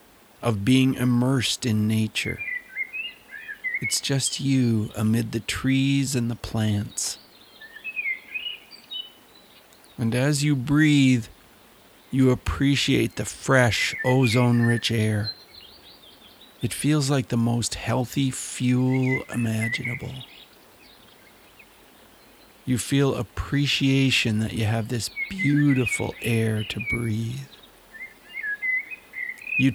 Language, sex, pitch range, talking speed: English, male, 115-140 Hz, 90 wpm